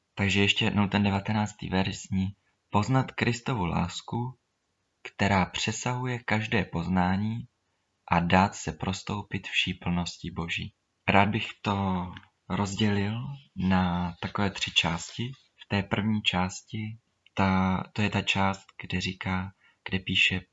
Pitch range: 90-100 Hz